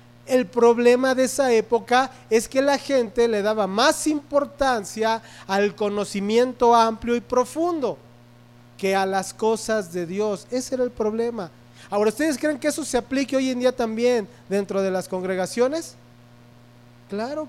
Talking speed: 150 wpm